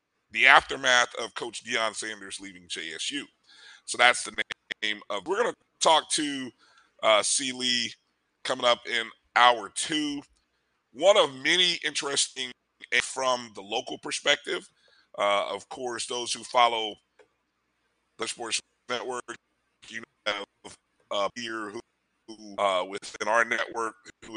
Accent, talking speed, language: American, 135 wpm, English